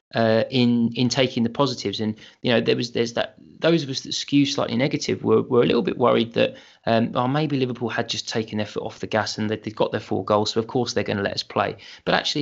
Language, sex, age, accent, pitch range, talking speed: English, male, 20-39, British, 110-125 Hz, 270 wpm